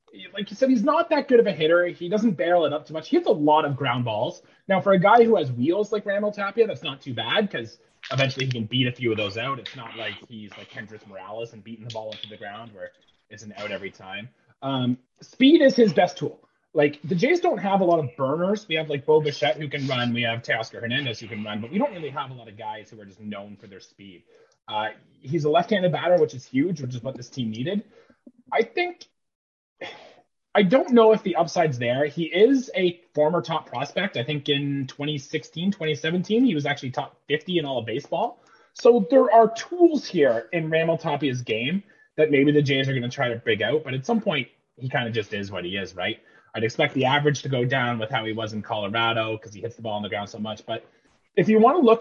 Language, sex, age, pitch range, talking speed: English, male, 30-49, 120-185 Hz, 255 wpm